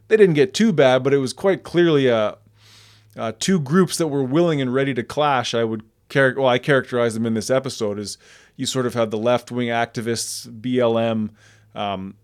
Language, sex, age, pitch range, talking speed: English, male, 20-39, 115-135 Hz, 200 wpm